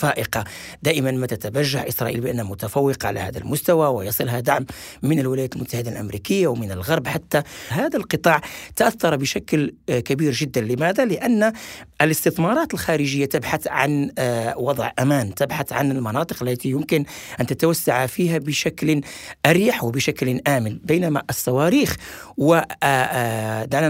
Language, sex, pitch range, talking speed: Arabic, male, 125-155 Hz, 120 wpm